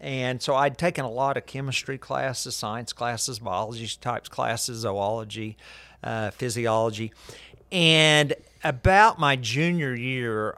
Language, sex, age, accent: English, male, 50-69, American